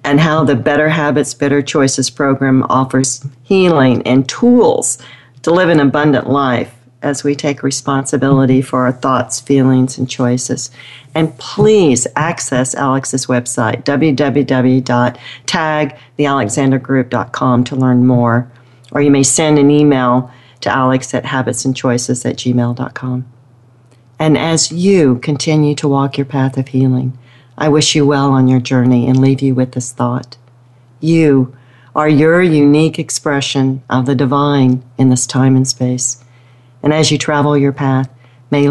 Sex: female